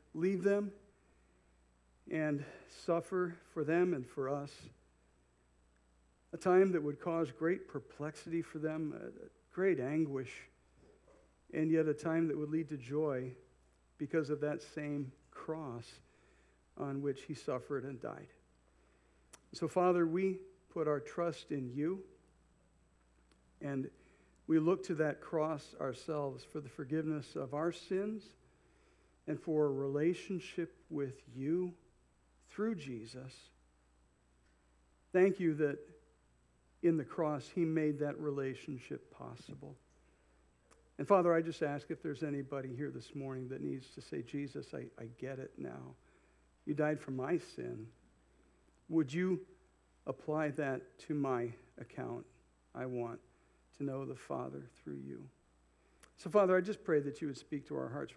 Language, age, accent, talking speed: English, 60-79, American, 135 wpm